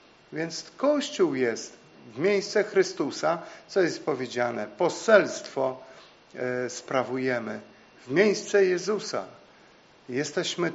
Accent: native